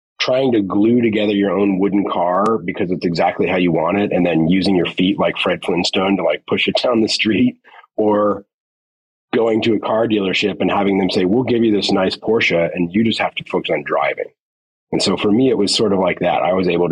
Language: English